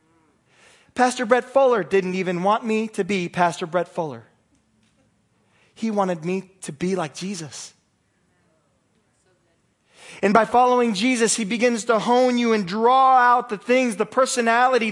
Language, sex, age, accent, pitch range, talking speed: English, male, 20-39, American, 155-240 Hz, 140 wpm